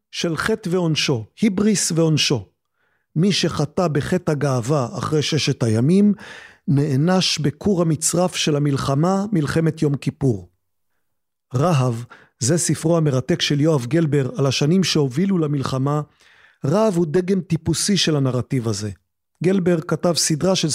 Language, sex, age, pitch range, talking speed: Hebrew, male, 40-59, 145-185 Hz, 120 wpm